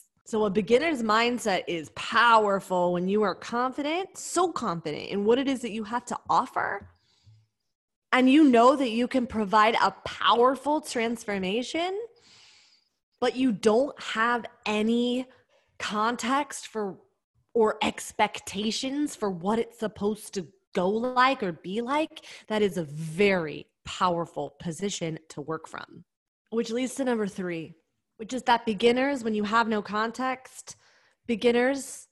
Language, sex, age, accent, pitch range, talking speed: English, female, 20-39, American, 180-245 Hz, 140 wpm